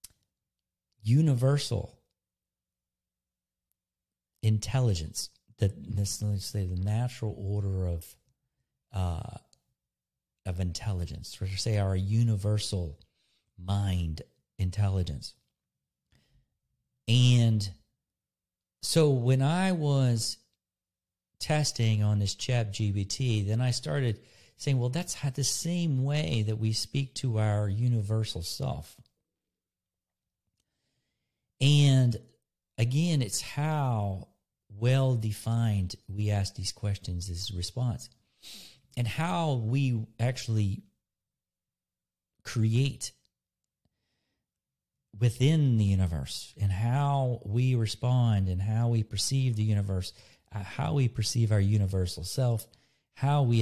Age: 50-69